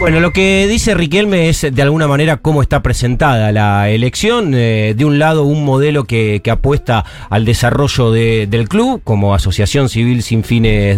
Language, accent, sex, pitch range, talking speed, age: Spanish, Argentinian, male, 115-170 Hz, 170 wpm, 40-59